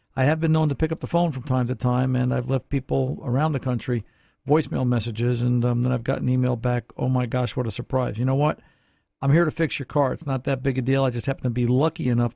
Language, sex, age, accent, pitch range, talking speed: English, male, 50-69, American, 120-140 Hz, 280 wpm